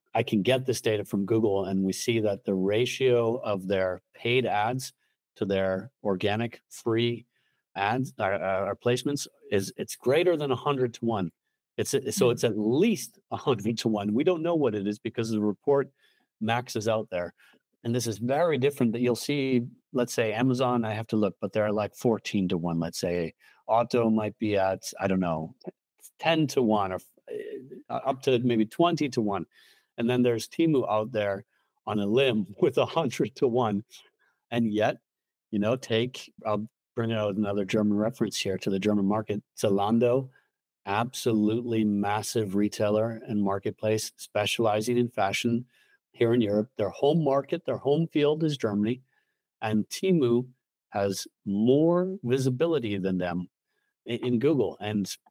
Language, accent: English, American